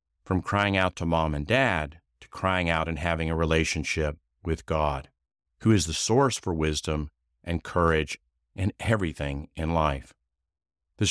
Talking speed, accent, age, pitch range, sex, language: 155 wpm, American, 50-69, 75-115 Hz, male, English